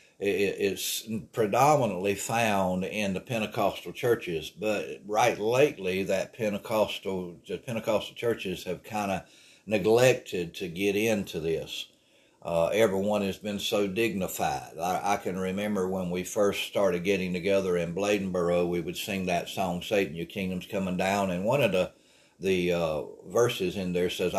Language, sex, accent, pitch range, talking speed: English, male, American, 95-110 Hz, 150 wpm